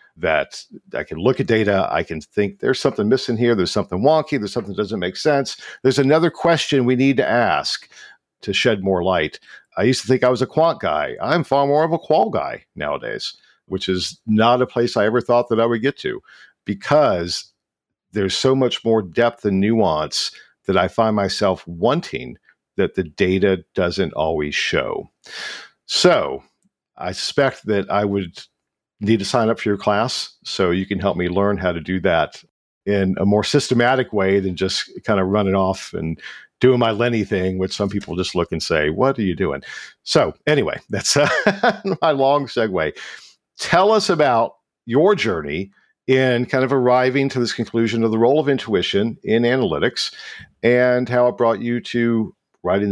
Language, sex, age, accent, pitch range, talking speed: English, male, 50-69, American, 100-130 Hz, 185 wpm